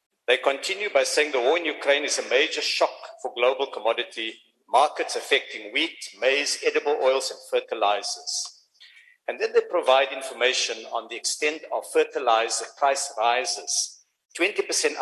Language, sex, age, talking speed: English, male, 50-69, 145 wpm